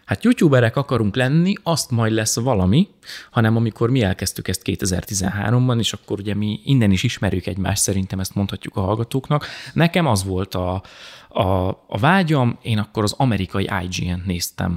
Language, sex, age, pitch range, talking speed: Hungarian, male, 30-49, 95-125 Hz, 165 wpm